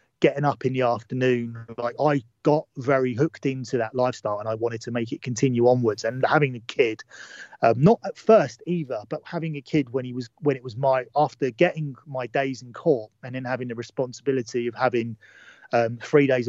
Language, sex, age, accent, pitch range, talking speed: English, male, 30-49, British, 120-140 Hz, 210 wpm